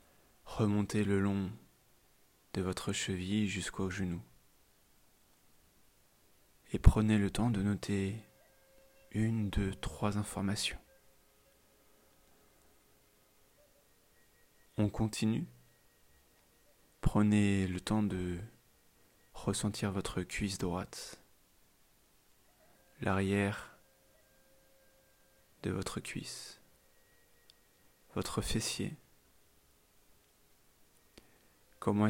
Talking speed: 65 wpm